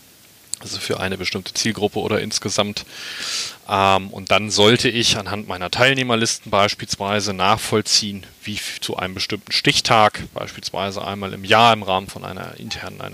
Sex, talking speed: male, 135 wpm